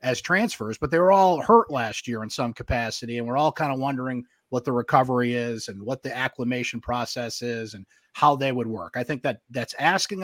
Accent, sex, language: American, male, English